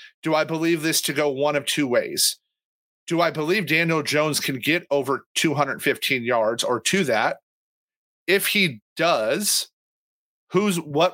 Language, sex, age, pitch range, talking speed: English, male, 40-59, 135-170 Hz, 150 wpm